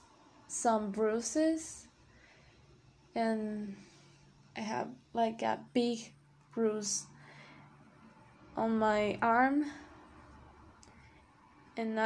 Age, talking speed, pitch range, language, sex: 20-39, 65 wpm, 205-230 Hz, Spanish, female